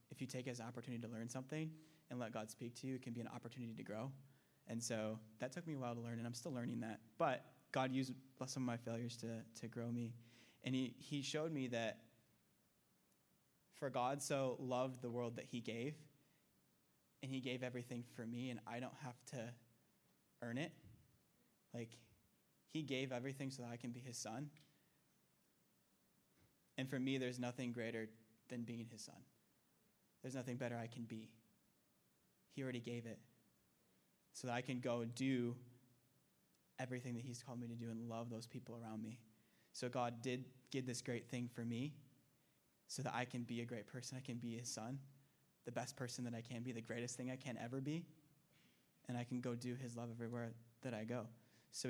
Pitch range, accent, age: 115-130 Hz, American, 20-39